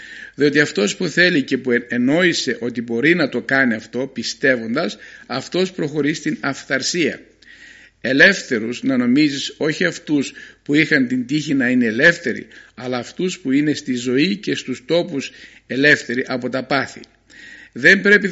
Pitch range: 125-175 Hz